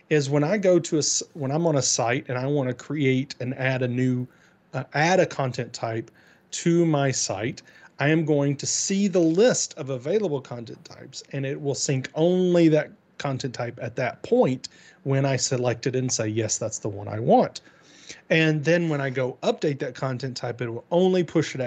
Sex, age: male, 30-49